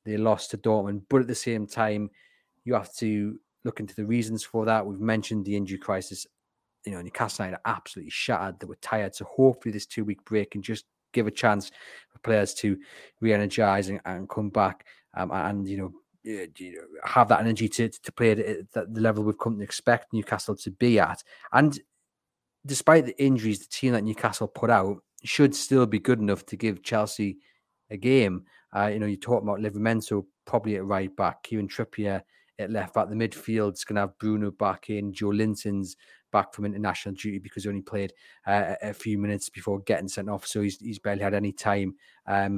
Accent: British